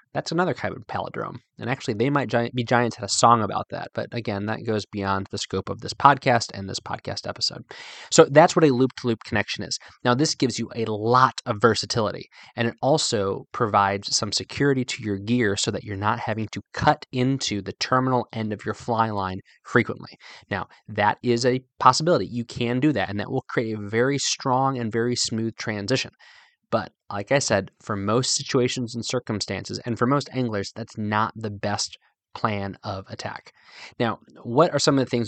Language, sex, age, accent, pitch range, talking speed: English, male, 20-39, American, 105-130 Hz, 200 wpm